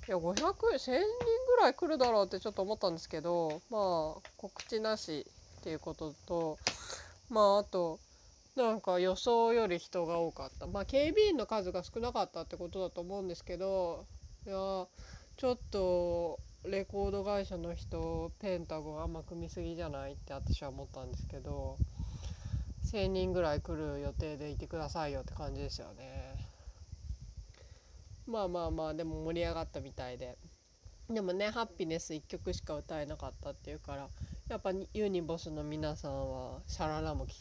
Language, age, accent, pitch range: Japanese, 20-39, native, 135-195 Hz